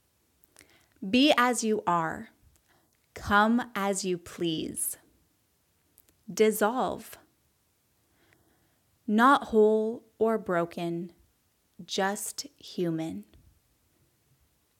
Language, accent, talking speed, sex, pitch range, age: English, American, 60 wpm, female, 180-215 Hz, 20-39